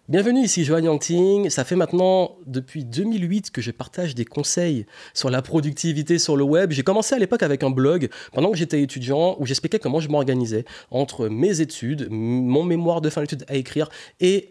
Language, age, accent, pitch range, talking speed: French, 30-49, French, 125-155 Hz, 190 wpm